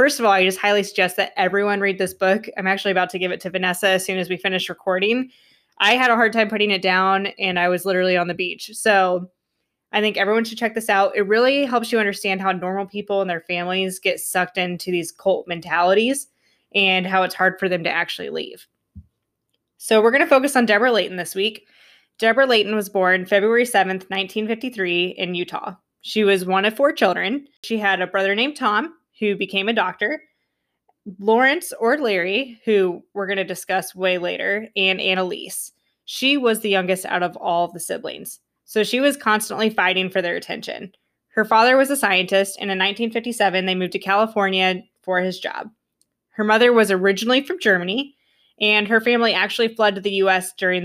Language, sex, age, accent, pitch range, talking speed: English, female, 20-39, American, 185-220 Hz, 200 wpm